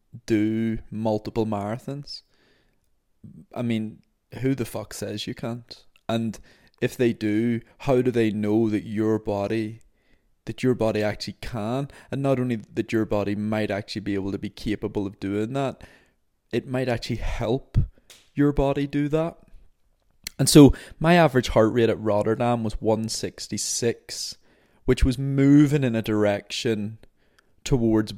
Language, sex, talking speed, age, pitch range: English, male, 145 wpm, 20-39, 100-120 Hz